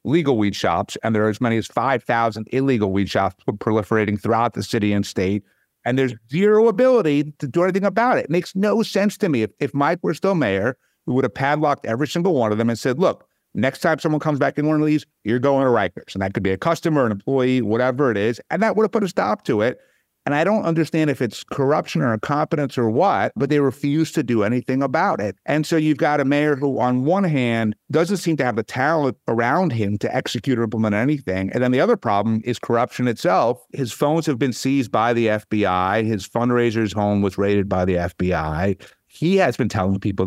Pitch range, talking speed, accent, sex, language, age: 105-150 Hz, 230 wpm, American, male, English, 50-69